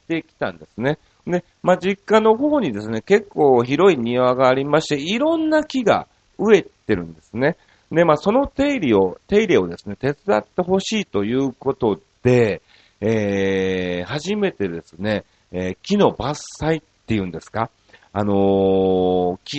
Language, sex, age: Japanese, male, 40-59